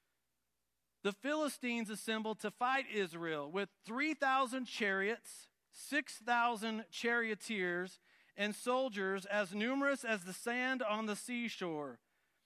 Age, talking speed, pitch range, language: 40-59, 100 wpm, 180-235 Hz, English